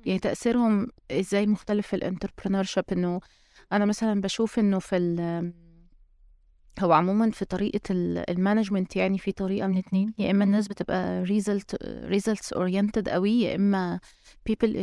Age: 20-39